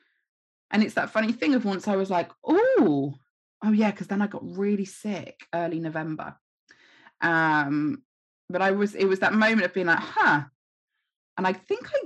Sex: female